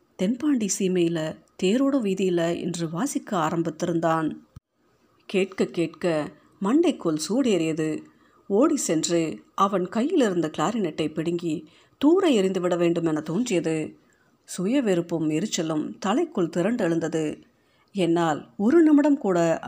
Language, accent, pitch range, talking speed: Tamil, native, 165-230 Hz, 90 wpm